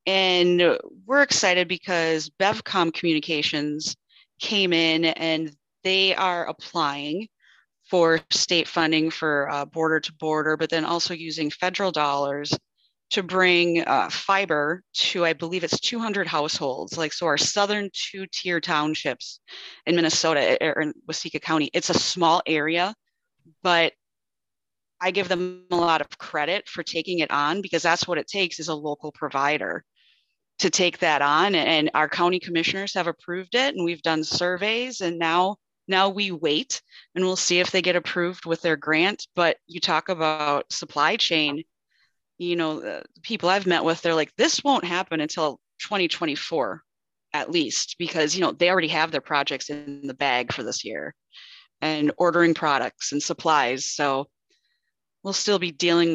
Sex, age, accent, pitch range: female, 30-49, American, 155-180 Hz